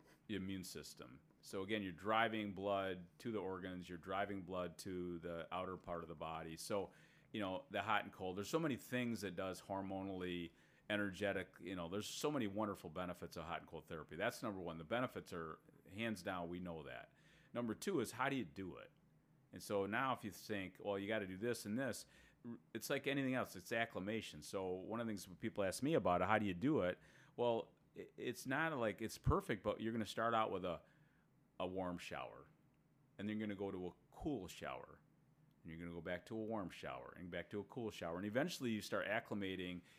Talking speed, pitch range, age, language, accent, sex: 225 wpm, 90-110 Hz, 40-59, English, American, male